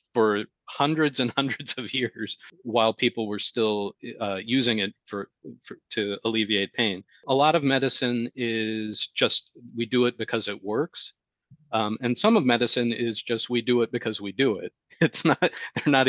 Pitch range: 105-125 Hz